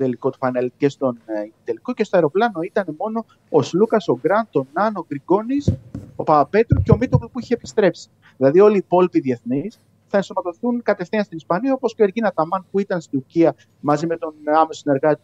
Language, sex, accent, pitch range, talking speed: Greek, male, native, 130-180 Hz, 200 wpm